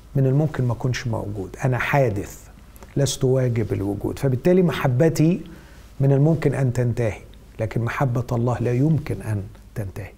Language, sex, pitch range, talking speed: Arabic, male, 120-170 Hz, 135 wpm